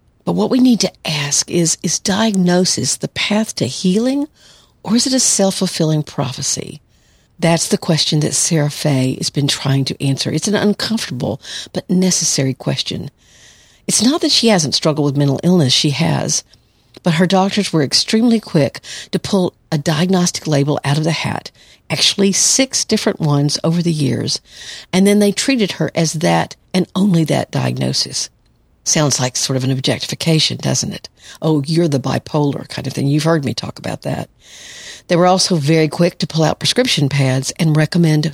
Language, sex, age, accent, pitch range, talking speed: English, female, 50-69, American, 145-185 Hz, 175 wpm